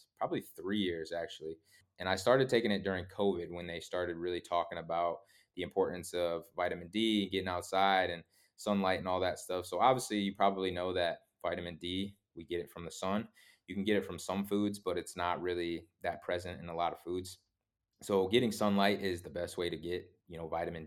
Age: 20-39